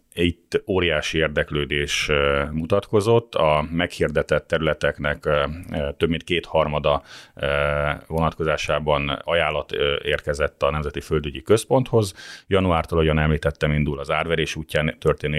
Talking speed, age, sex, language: 100 wpm, 30-49, male, Hungarian